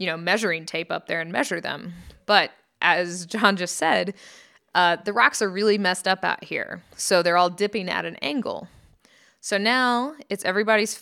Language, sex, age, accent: English, female, 20-39, American